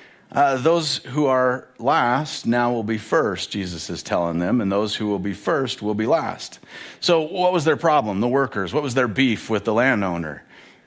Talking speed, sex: 200 wpm, male